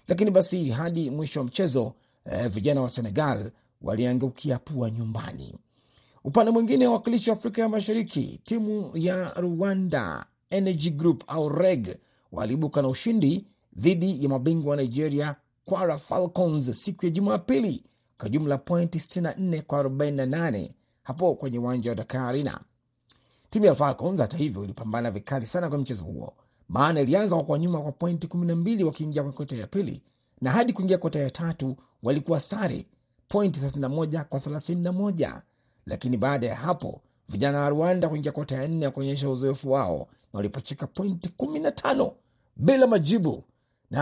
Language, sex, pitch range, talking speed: Swahili, male, 130-180 Hz, 145 wpm